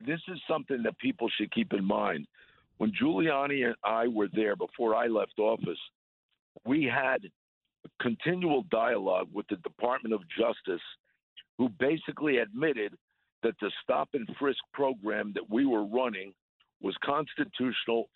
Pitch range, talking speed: 115-160 Hz, 140 wpm